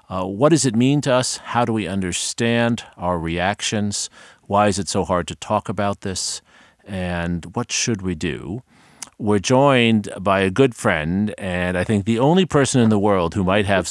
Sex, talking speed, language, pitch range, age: male, 195 wpm, English, 90-110 Hz, 50-69